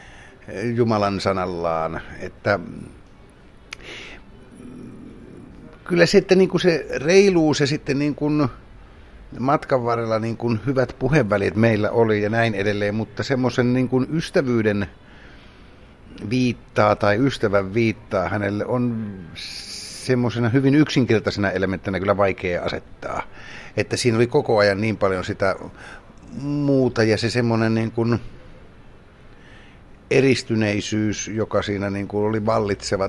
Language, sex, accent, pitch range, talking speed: Finnish, male, native, 100-125 Hz, 115 wpm